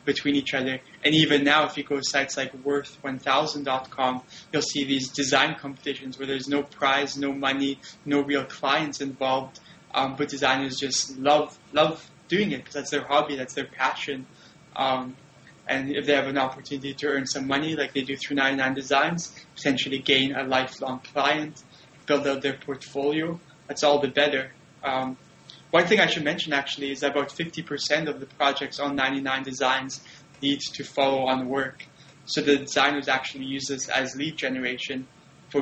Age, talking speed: 20-39, 175 wpm